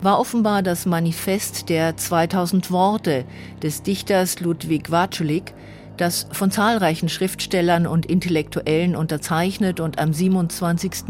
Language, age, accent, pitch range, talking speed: German, 50-69, German, 150-190 Hz, 115 wpm